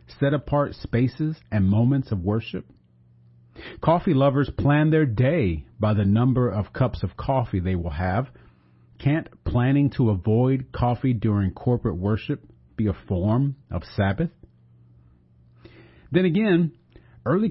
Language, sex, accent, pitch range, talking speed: English, male, American, 90-145 Hz, 130 wpm